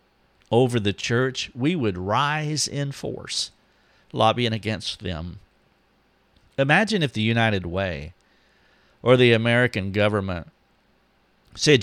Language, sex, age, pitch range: English, male, 50-69, 100-120 Hz